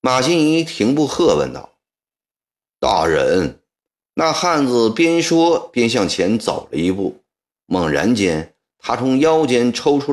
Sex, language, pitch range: male, Chinese, 100-160 Hz